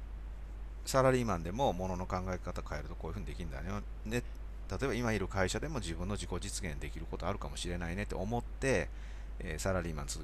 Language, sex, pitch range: Japanese, male, 65-105 Hz